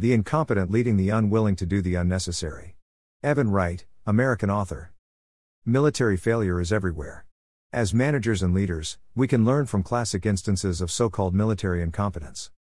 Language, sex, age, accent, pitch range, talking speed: English, male, 50-69, American, 90-115 Hz, 150 wpm